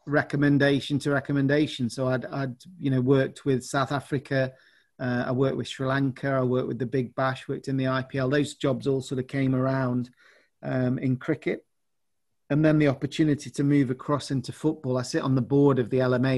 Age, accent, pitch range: 40-59, British, 125-140 Hz